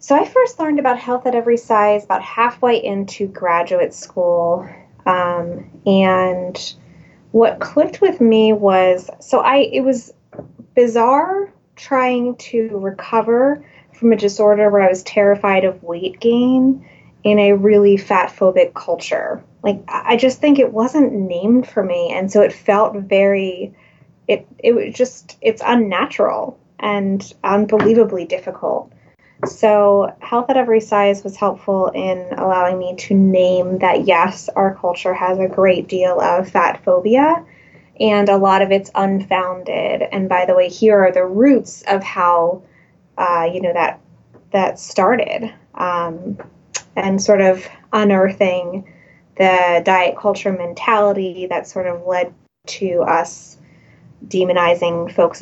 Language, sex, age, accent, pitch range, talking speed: English, female, 20-39, American, 180-225 Hz, 140 wpm